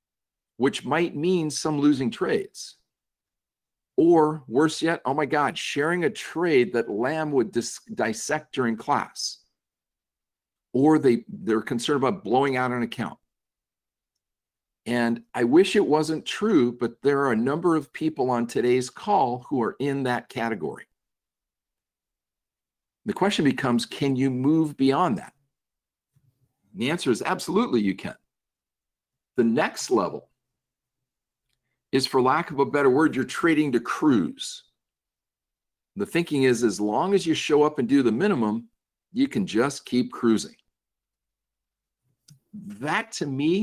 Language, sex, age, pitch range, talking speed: English, male, 50-69, 120-165 Hz, 140 wpm